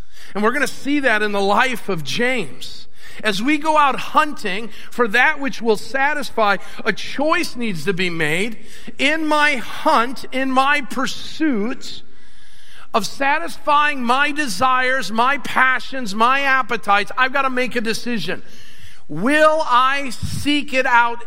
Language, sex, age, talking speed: English, male, 50-69, 140 wpm